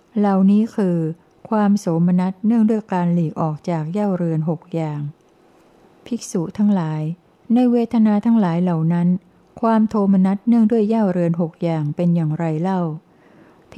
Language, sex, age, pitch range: Thai, female, 60-79, 170-200 Hz